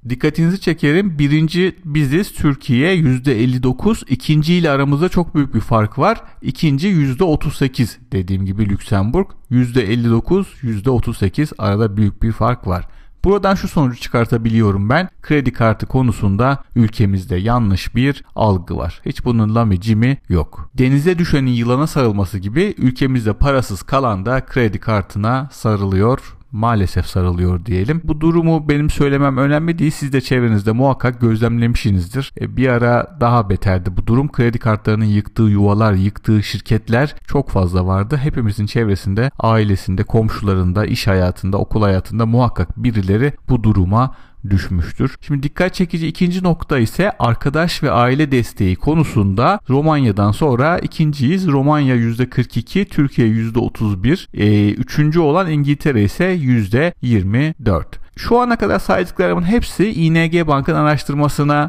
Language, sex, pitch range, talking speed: Turkish, male, 105-150 Hz, 125 wpm